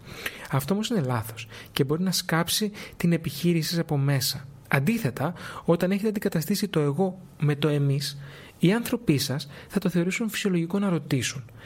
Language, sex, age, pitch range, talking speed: Greek, male, 30-49, 140-190 Hz, 160 wpm